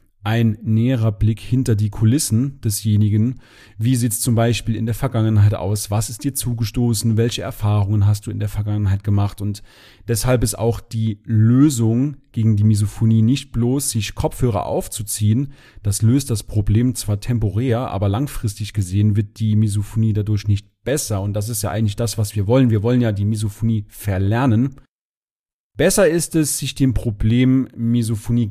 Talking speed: 165 wpm